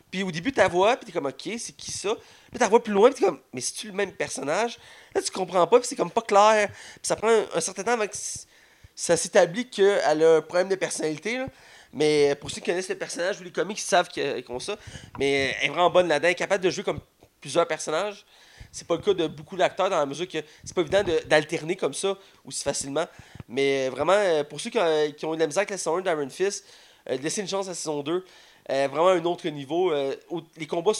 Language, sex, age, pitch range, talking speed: French, male, 30-49, 140-195 Hz, 275 wpm